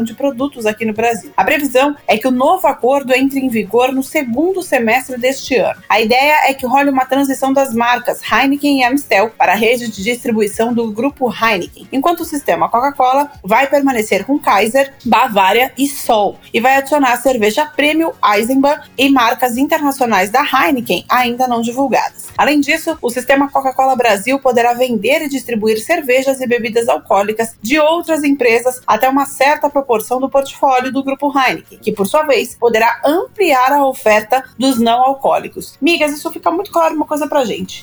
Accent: Brazilian